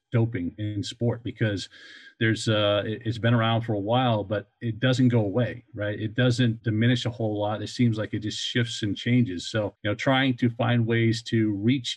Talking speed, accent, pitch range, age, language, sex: 205 wpm, American, 105-120 Hz, 40-59, English, male